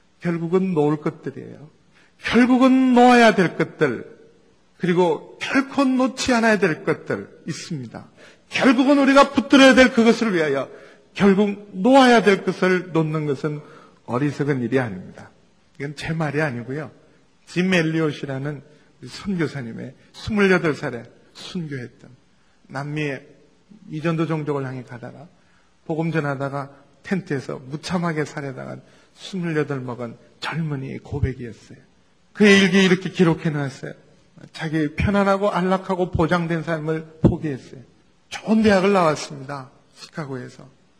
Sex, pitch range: male, 150-195 Hz